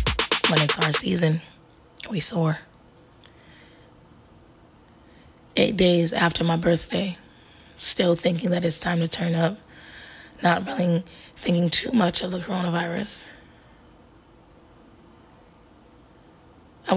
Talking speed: 100 wpm